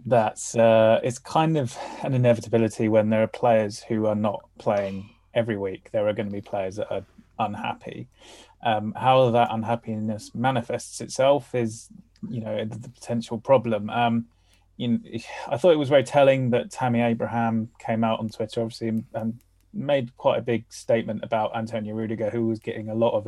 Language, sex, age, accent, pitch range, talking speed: English, male, 20-39, British, 110-120 Hz, 180 wpm